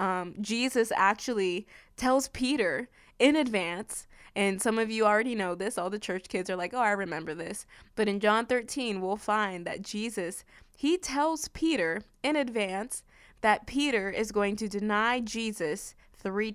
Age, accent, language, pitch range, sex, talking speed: 20-39, American, English, 190-225 Hz, female, 165 wpm